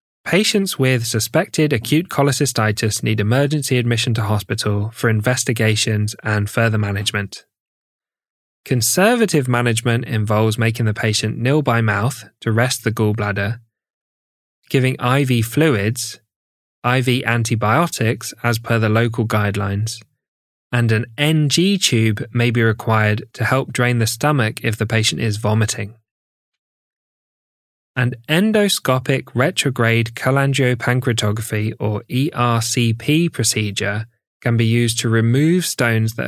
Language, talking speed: English, 115 wpm